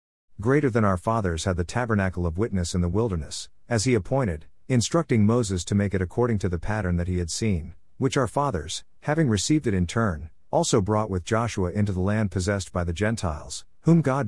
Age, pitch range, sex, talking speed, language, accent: 50-69, 90-115 Hz, male, 205 wpm, English, American